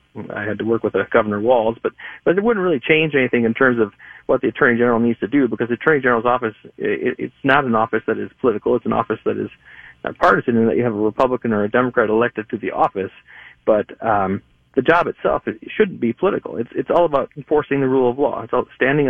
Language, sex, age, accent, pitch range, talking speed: English, male, 40-59, American, 110-130 Hz, 250 wpm